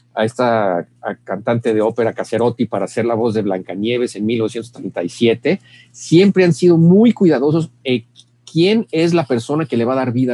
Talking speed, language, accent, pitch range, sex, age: 180 wpm, Spanish, Mexican, 115-155 Hz, male, 50-69